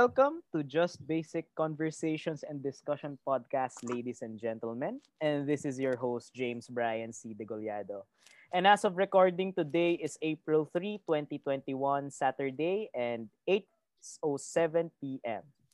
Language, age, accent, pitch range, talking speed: Filipino, 20-39, native, 135-180 Hz, 125 wpm